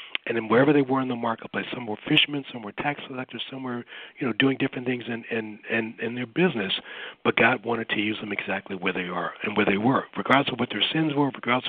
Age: 60-79